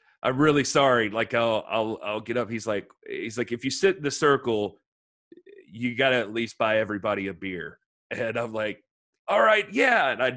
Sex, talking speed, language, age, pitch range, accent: male, 210 wpm, English, 30-49, 105-155 Hz, American